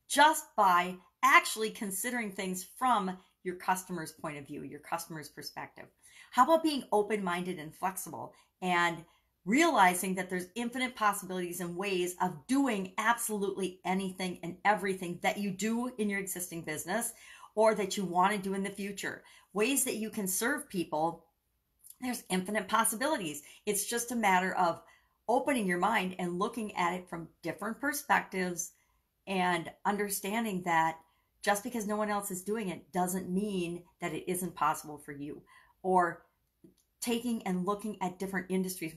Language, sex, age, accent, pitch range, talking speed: English, female, 50-69, American, 175-210 Hz, 150 wpm